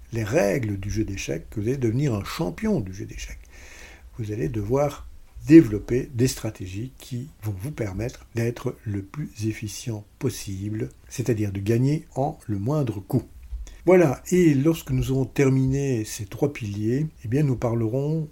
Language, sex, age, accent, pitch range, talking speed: French, male, 60-79, French, 105-145 Hz, 155 wpm